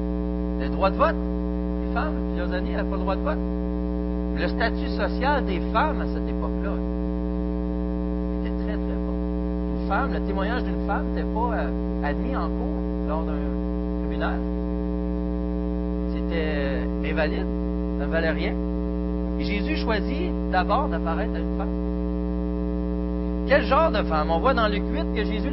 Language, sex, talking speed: French, male, 150 wpm